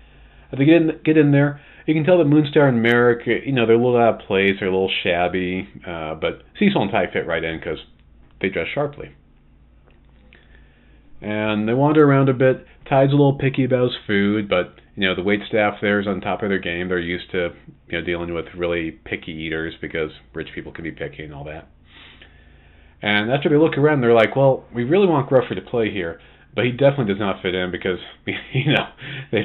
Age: 40-59